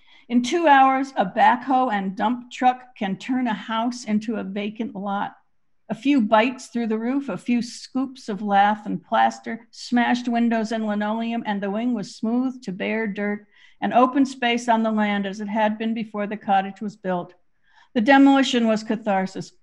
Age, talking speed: 50-69, 185 wpm